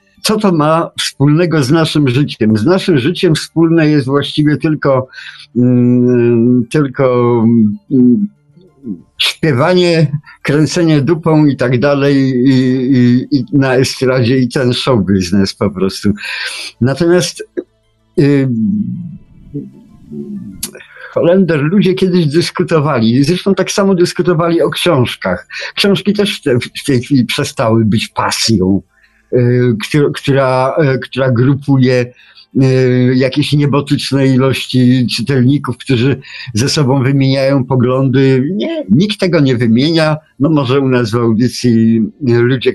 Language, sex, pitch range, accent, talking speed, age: Polish, male, 120-150 Hz, native, 100 wpm, 50-69